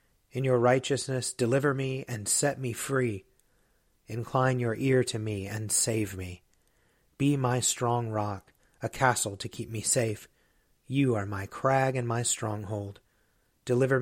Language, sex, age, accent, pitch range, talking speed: English, male, 30-49, American, 105-130 Hz, 150 wpm